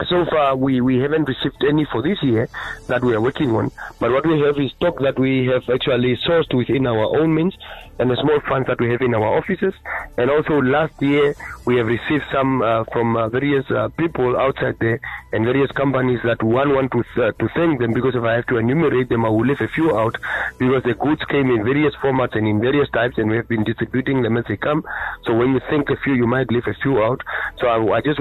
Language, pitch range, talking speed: English, 115-140 Hz, 245 wpm